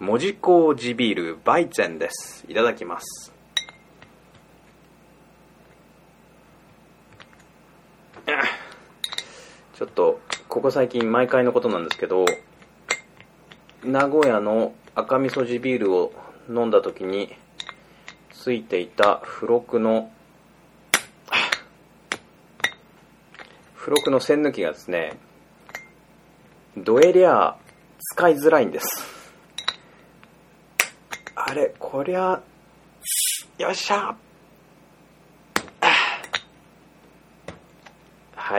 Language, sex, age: Japanese, male, 40-59